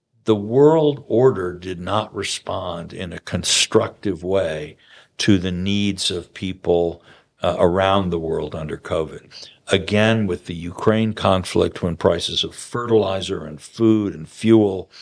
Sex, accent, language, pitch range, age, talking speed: male, American, English, 90-105 Hz, 60-79, 135 wpm